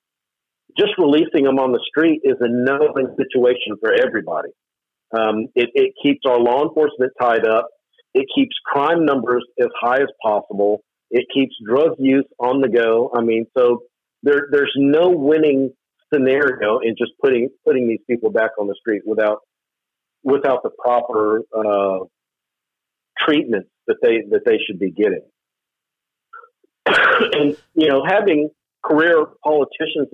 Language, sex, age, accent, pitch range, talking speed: English, male, 50-69, American, 120-195 Hz, 145 wpm